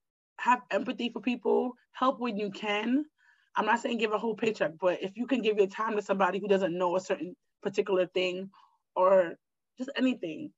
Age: 20-39